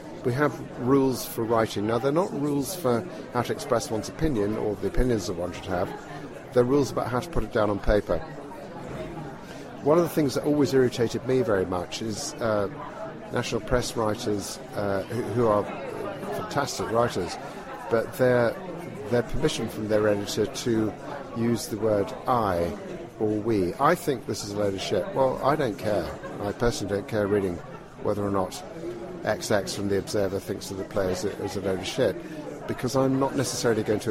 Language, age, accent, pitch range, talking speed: English, 50-69, British, 100-130 Hz, 185 wpm